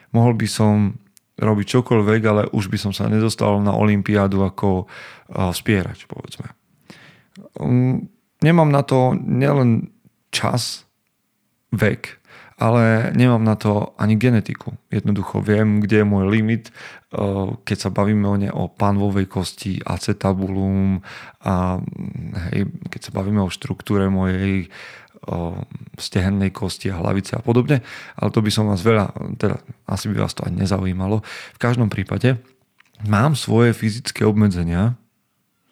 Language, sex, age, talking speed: Slovak, male, 40-59, 130 wpm